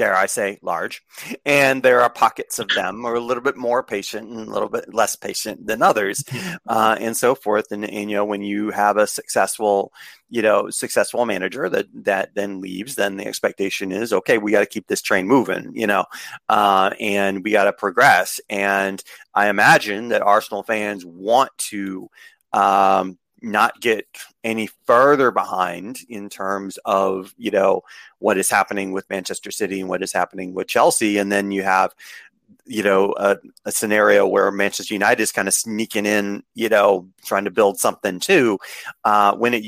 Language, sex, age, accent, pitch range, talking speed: English, male, 30-49, American, 95-105 Hz, 190 wpm